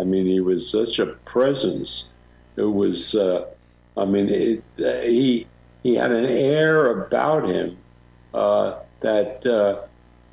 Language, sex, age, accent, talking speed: English, male, 60-79, American, 140 wpm